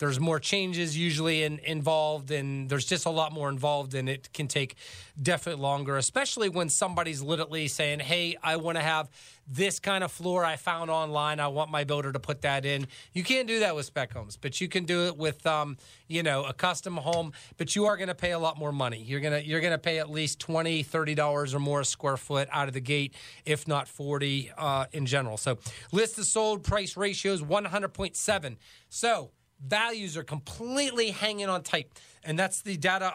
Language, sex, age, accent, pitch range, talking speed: English, male, 30-49, American, 145-180 Hz, 215 wpm